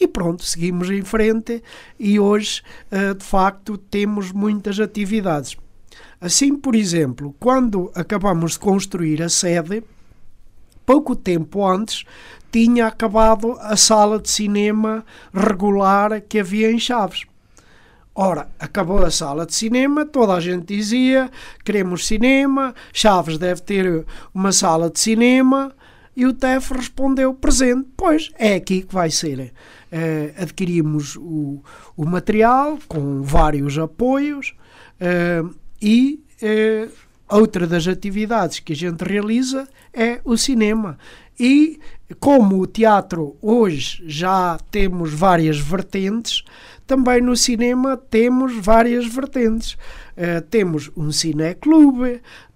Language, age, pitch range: Portuguese, 50-69, 175-240 Hz